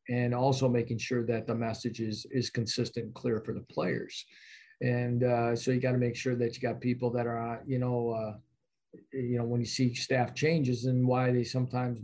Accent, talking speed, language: American, 215 wpm, English